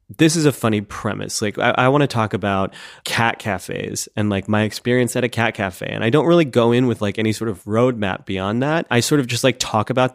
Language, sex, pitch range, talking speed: English, male, 105-125 Hz, 250 wpm